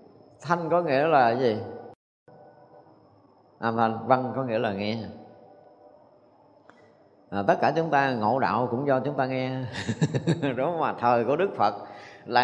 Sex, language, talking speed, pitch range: male, Vietnamese, 145 wpm, 130-200 Hz